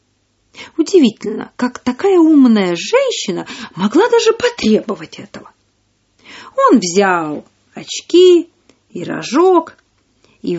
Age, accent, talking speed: 40-59, native, 85 wpm